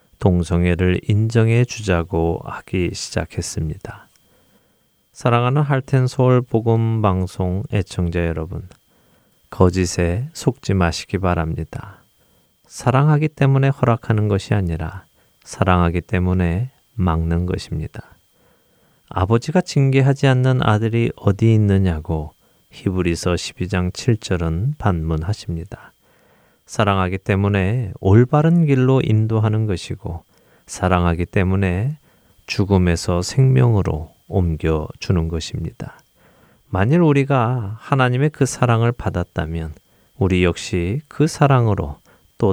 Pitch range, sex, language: 90-125 Hz, male, Korean